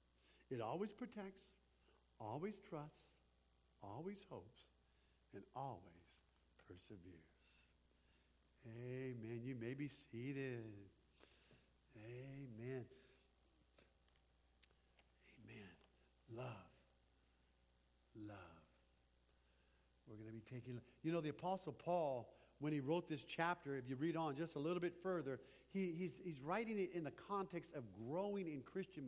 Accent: American